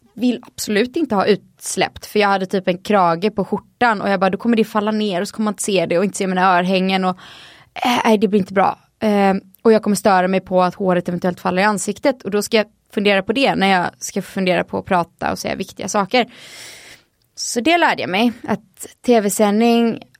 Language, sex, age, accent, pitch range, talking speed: Swedish, female, 20-39, native, 185-225 Hz, 230 wpm